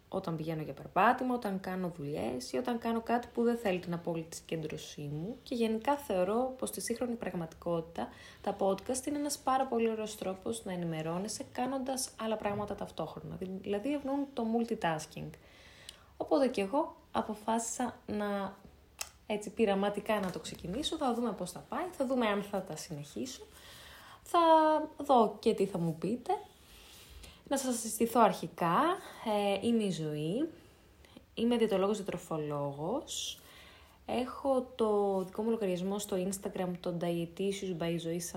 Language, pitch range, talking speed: Greek, 175-240 Hz, 140 wpm